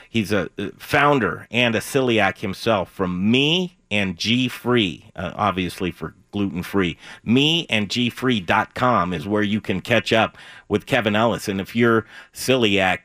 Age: 40-59